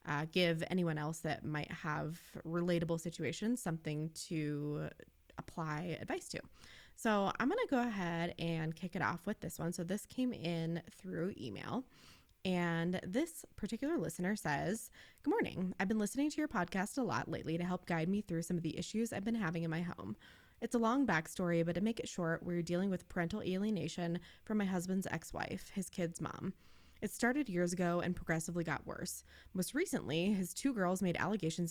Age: 20-39